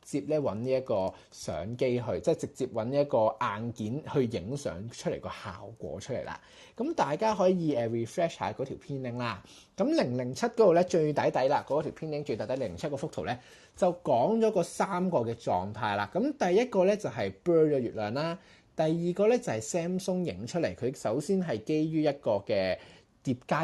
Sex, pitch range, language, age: male, 120-175 Hz, Chinese, 20-39